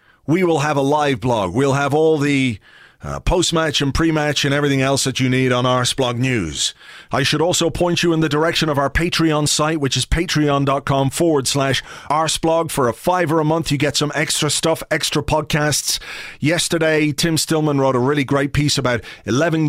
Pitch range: 130-155 Hz